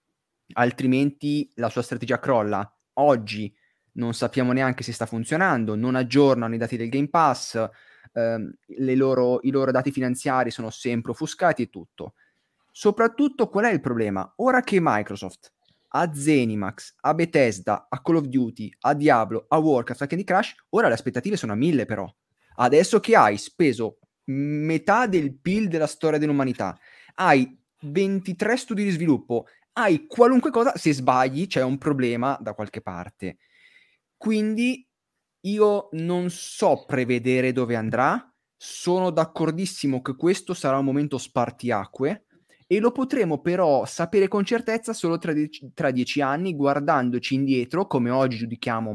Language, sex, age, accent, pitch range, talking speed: Italian, male, 20-39, native, 120-170 Hz, 145 wpm